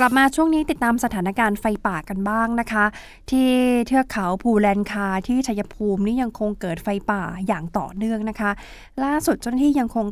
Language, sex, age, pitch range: Thai, female, 20-39, 195-235 Hz